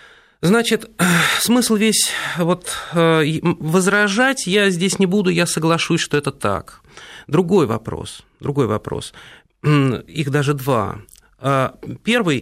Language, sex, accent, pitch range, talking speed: Russian, male, native, 115-155 Hz, 105 wpm